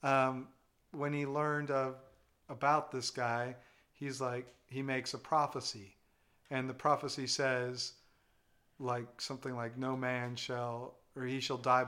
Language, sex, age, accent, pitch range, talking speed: English, male, 40-59, American, 130-145 Hz, 140 wpm